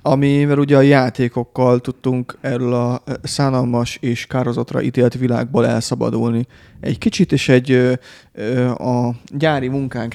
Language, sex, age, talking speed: Hungarian, male, 30-49, 130 wpm